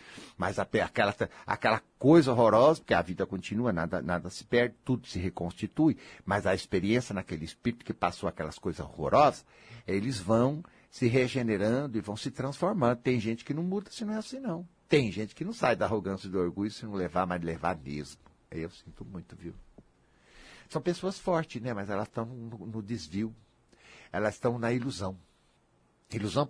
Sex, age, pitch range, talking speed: male, 60-79, 100-160 Hz, 180 wpm